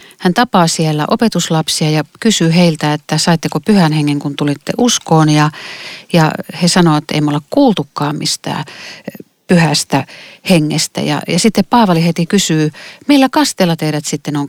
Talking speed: 150 wpm